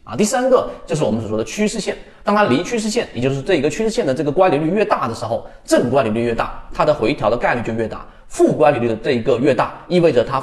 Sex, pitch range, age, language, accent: male, 115-170 Hz, 30-49, Chinese, native